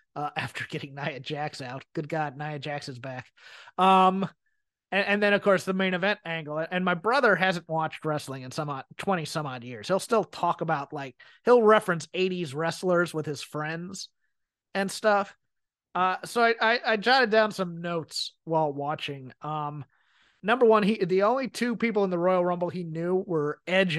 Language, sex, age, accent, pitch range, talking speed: English, male, 30-49, American, 160-205 Hz, 185 wpm